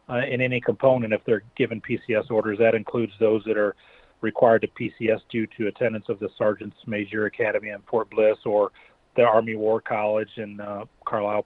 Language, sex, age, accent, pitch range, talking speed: English, male, 40-59, American, 110-125 Hz, 190 wpm